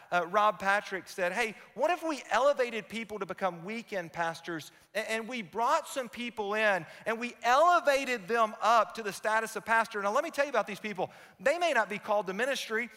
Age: 40-59